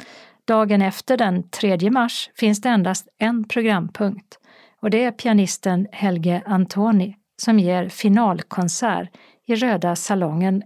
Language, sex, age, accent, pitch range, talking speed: Swedish, female, 50-69, native, 190-230 Hz, 125 wpm